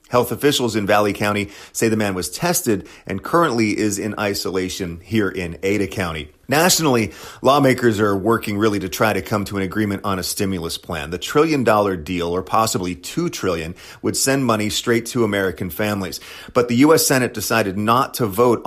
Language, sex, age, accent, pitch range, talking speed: English, male, 30-49, American, 95-120 Hz, 185 wpm